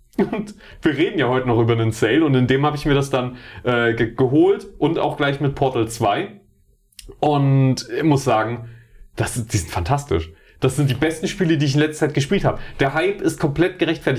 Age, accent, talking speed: 30-49, German, 220 wpm